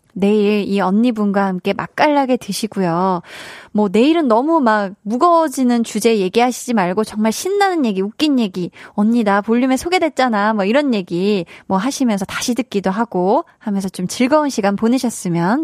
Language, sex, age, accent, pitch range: Korean, female, 20-39, native, 190-250 Hz